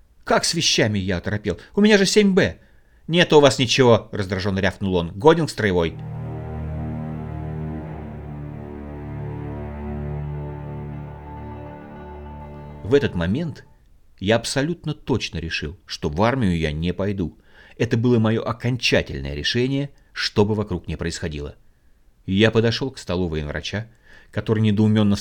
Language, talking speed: Russian, 120 wpm